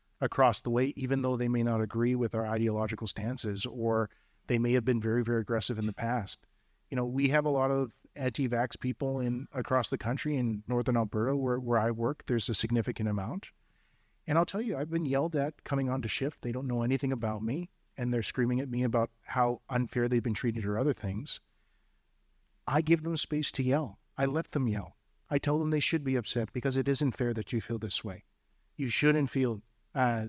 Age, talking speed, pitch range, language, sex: 40-59, 220 wpm, 110-135 Hz, English, male